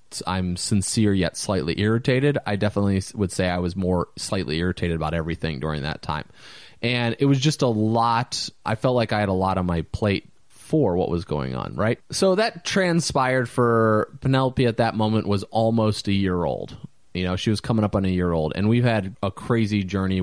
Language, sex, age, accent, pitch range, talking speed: English, male, 20-39, American, 95-125 Hz, 210 wpm